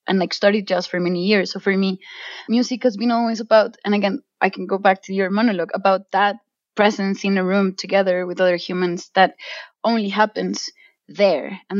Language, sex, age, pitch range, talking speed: English, female, 20-39, 185-210 Hz, 200 wpm